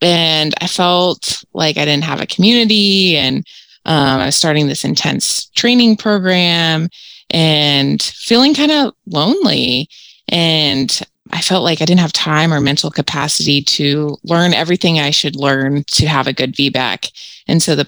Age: 20-39